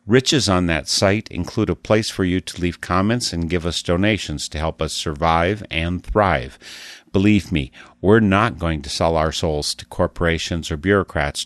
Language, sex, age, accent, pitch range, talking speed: English, male, 50-69, American, 80-100 Hz, 185 wpm